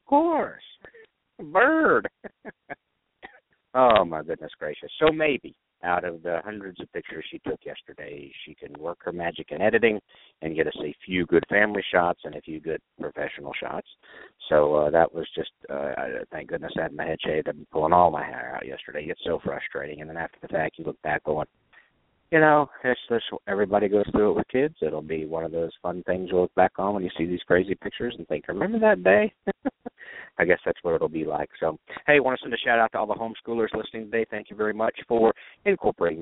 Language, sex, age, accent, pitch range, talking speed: English, male, 50-69, American, 90-130 Hz, 220 wpm